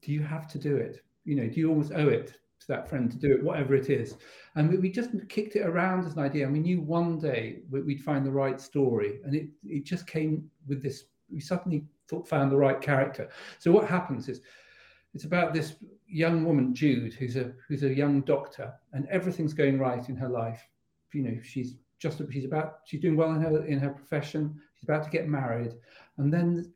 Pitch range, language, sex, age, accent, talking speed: 135-160 Hz, English, male, 50-69, British, 220 wpm